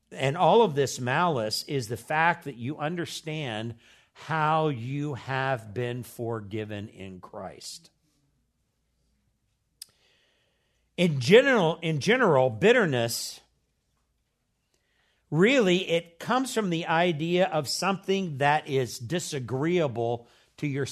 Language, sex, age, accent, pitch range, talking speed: English, male, 60-79, American, 120-160 Hz, 105 wpm